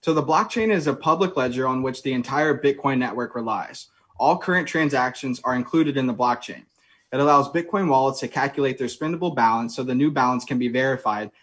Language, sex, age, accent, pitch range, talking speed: English, male, 20-39, American, 125-150 Hz, 200 wpm